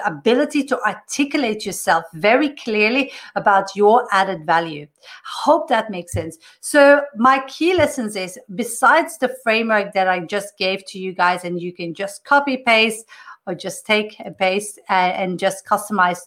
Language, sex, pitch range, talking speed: English, female, 195-260 Hz, 160 wpm